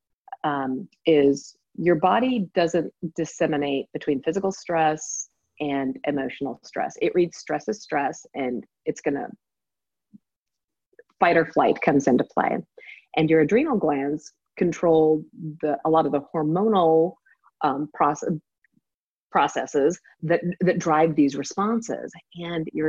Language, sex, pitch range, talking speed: English, female, 150-215 Hz, 125 wpm